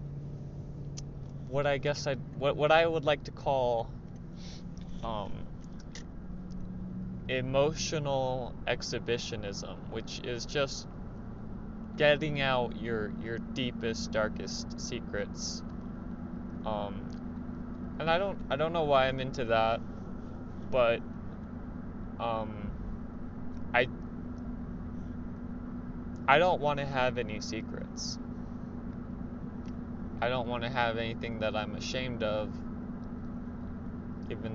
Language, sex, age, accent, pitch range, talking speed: English, male, 20-39, American, 110-140 Hz, 95 wpm